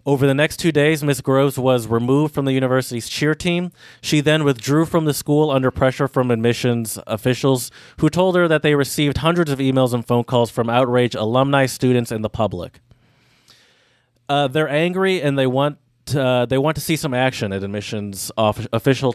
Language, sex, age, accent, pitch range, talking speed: English, male, 30-49, American, 115-145 Hz, 190 wpm